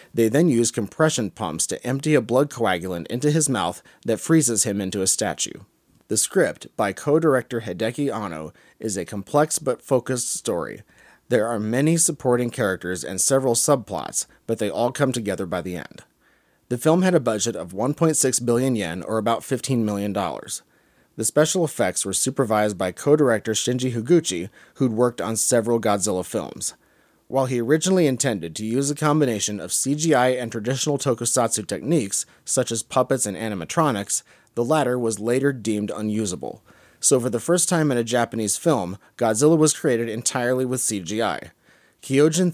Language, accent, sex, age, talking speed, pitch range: English, American, male, 30-49, 165 wpm, 105-140 Hz